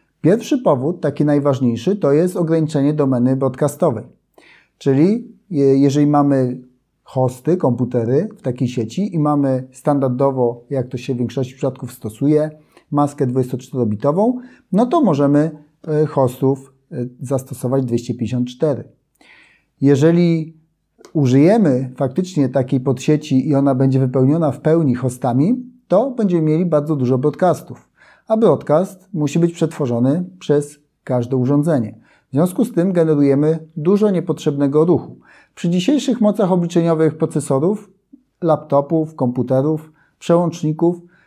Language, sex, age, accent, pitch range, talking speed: Polish, male, 30-49, native, 135-170 Hz, 110 wpm